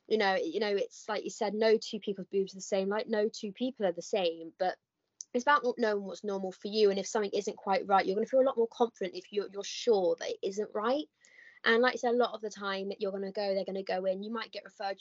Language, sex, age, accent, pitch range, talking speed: English, female, 20-39, British, 185-225 Hz, 300 wpm